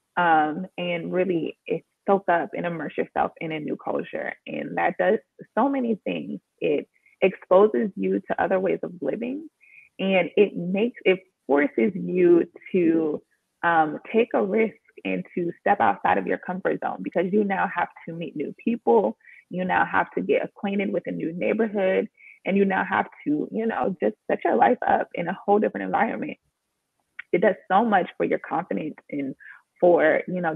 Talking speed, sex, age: 180 wpm, female, 20-39